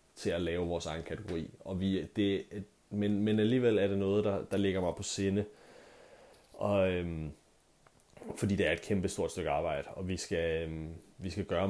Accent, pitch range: native, 90-105 Hz